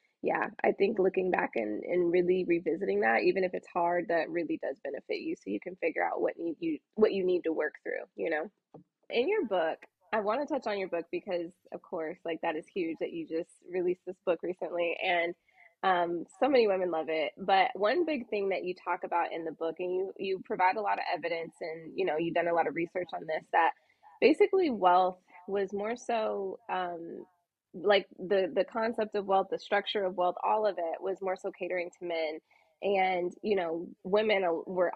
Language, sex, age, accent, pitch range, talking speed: English, female, 20-39, American, 175-210 Hz, 220 wpm